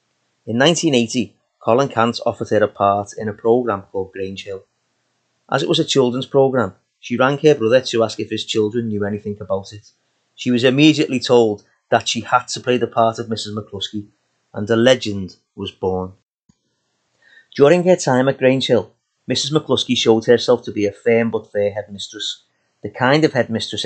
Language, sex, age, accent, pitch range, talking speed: English, male, 30-49, British, 105-135 Hz, 185 wpm